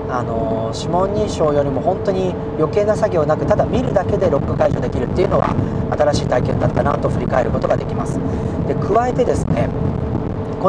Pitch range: 130-165 Hz